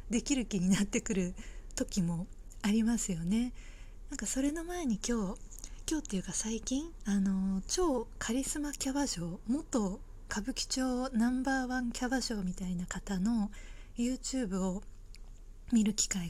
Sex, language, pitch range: female, Japanese, 190-260 Hz